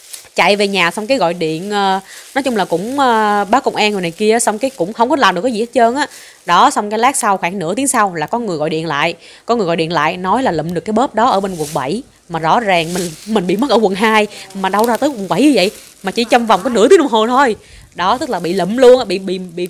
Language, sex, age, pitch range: Vietnamese, female, 20-39, 185-250 Hz